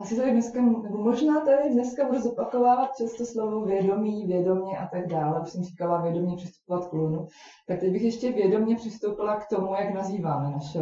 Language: Czech